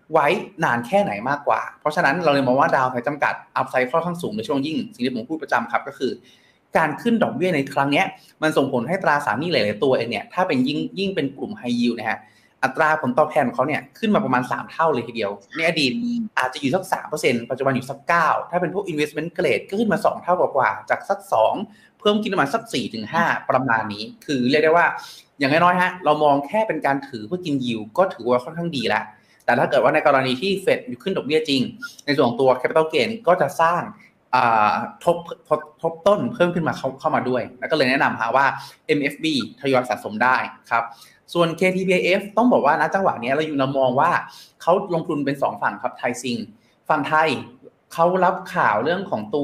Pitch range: 130-185 Hz